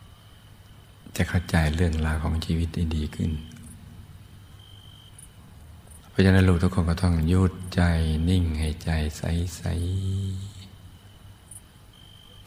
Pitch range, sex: 80-95 Hz, male